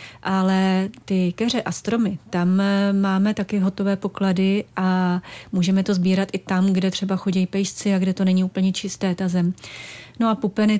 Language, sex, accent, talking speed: Czech, female, native, 170 wpm